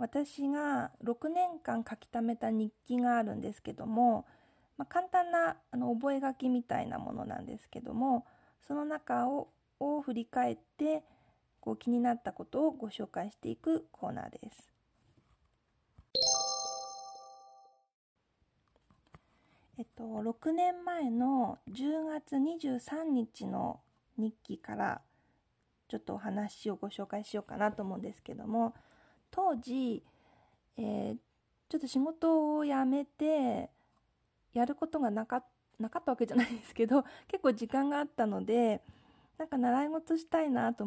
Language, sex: Japanese, female